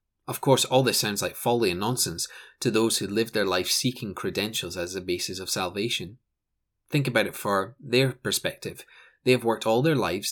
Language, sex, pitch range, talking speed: English, male, 100-125 Hz, 200 wpm